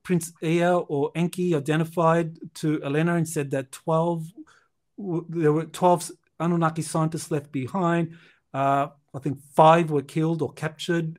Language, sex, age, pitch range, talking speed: English, male, 50-69, 145-175 Hz, 140 wpm